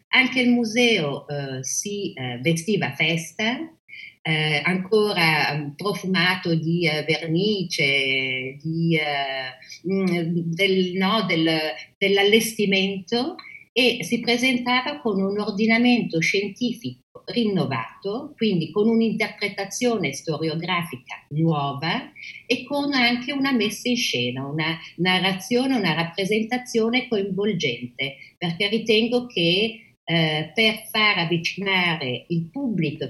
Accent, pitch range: native, 160-225 Hz